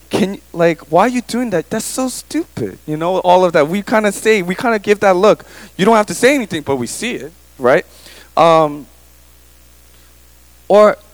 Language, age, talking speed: English, 20-39, 210 wpm